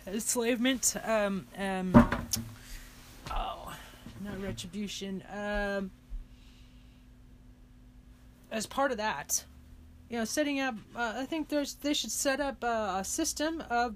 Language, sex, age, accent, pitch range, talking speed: English, female, 30-49, American, 185-240 Hz, 115 wpm